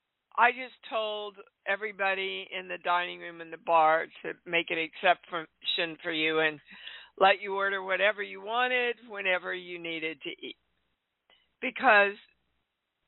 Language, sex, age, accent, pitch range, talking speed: English, female, 60-79, American, 165-220 Hz, 140 wpm